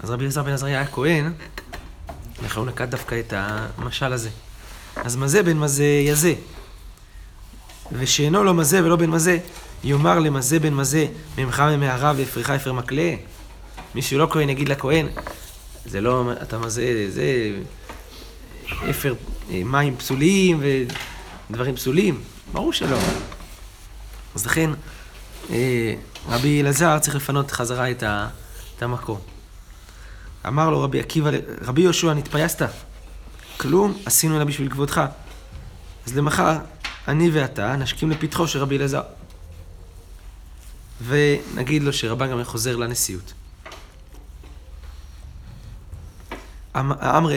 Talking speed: 110 wpm